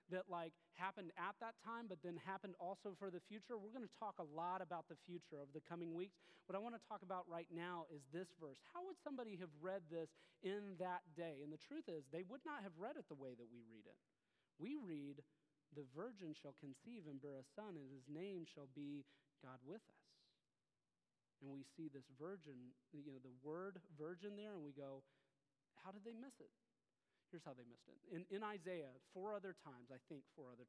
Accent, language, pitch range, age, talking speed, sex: American, English, 150-190 Hz, 30-49, 220 wpm, male